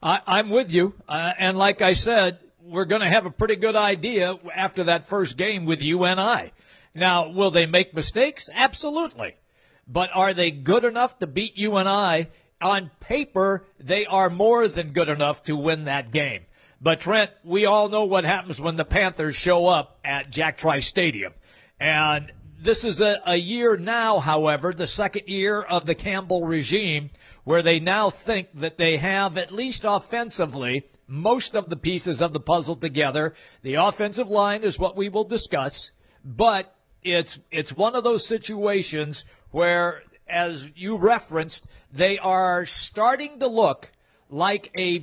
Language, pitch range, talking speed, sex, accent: English, 160-205 Hz, 165 wpm, male, American